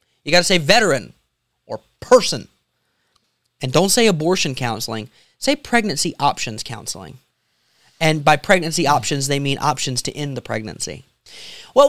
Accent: American